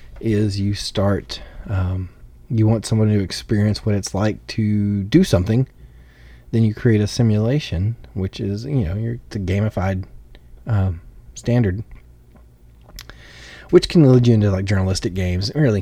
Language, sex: English, male